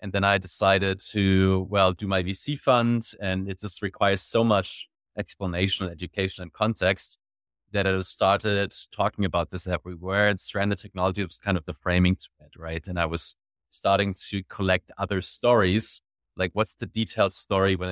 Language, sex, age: English, male, 30-49